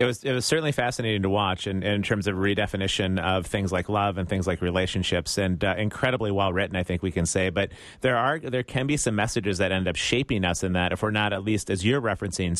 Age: 30-49